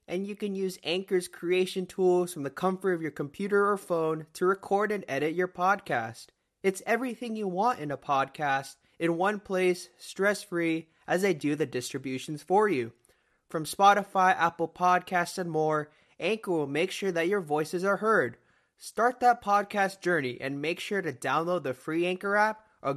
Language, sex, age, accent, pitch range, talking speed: English, male, 20-39, American, 135-185 Hz, 180 wpm